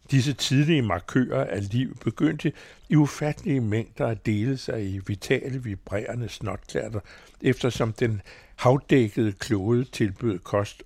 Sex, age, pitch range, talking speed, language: male, 60-79, 100-130 Hz, 120 wpm, Danish